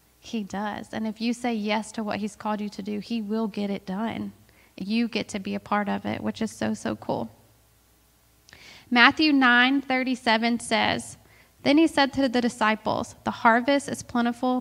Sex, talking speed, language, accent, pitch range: female, 195 wpm, English, American, 205-235 Hz